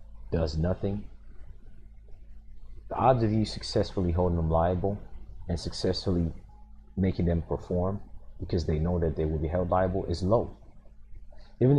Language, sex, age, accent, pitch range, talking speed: English, male, 30-49, American, 85-110 Hz, 135 wpm